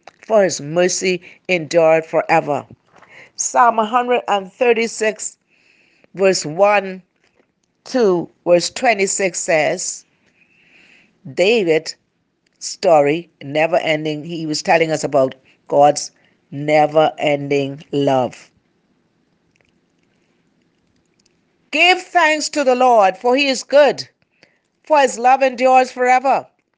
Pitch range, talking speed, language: 195-295 Hz, 90 wpm, English